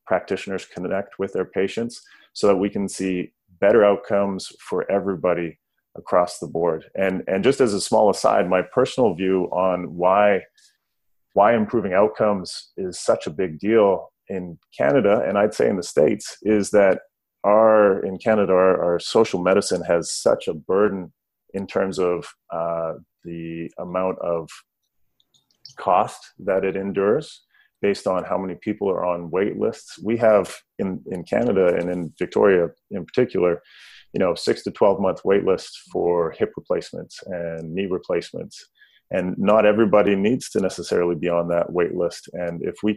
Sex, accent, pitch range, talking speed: male, Canadian, 85-100 Hz, 160 wpm